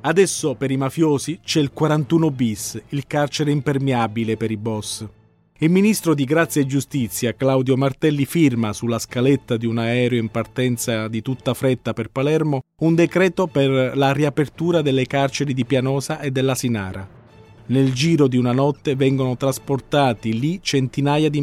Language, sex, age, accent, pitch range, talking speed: Italian, male, 40-59, native, 115-145 Hz, 160 wpm